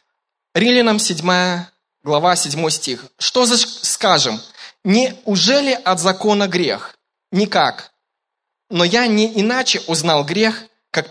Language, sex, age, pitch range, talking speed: Russian, male, 20-39, 160-220 Hz, 110 wpm